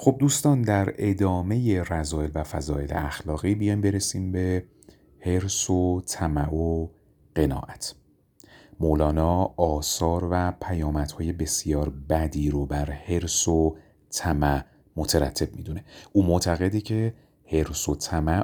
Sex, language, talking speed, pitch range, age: male, Persian, 115 wpm, 75-90 Hz, 40-59